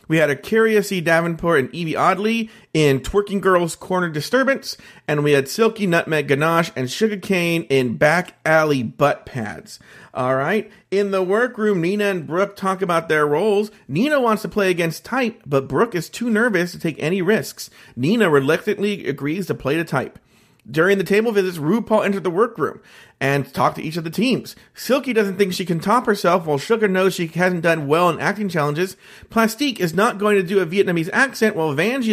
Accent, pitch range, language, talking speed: American, 155-210 Hz, English, 190 wpm